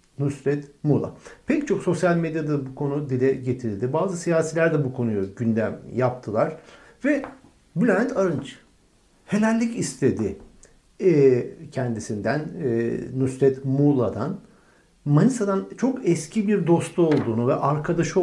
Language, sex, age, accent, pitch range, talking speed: Turkish, male, 60-79, native, 130-200 Hz, 110 wpm